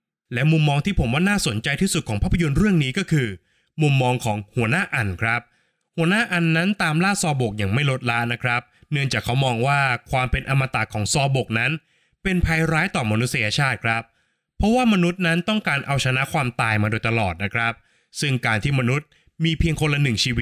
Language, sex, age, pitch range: Thai, male, 20-39, 115-155 Hz